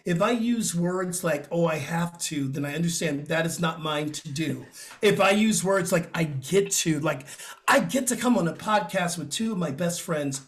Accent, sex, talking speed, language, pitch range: American, male, 230 wpm, English, 165-215 Hz